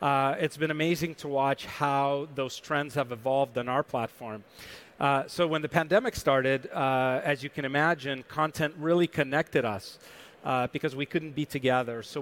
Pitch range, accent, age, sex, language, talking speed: 130-155 Hz, American, 40-59, male, English, 175 wpm